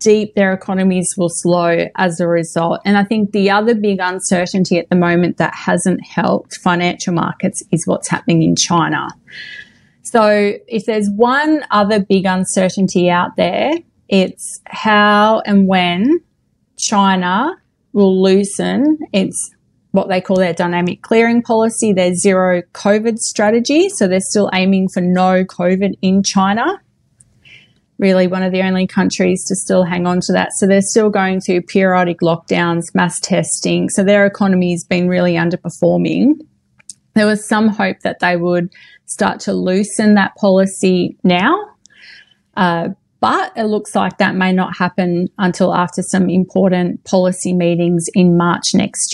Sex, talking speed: female, 150 wpm